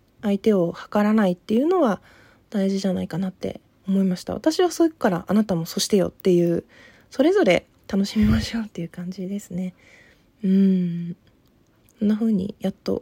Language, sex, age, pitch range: Japanese, female, 20-39, 190-245 Hz